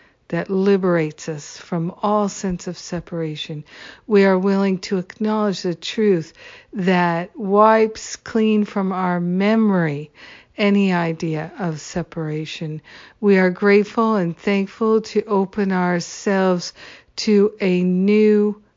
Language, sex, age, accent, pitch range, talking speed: English, female, 60-79, American, 170-200 Hz, 115 wpm